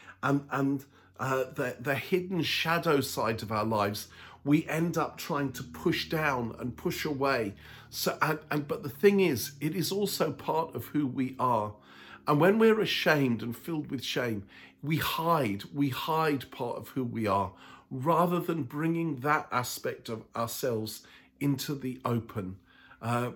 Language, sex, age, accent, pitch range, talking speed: English, male, 50-69, British, 120-165 Hz, 165 wpm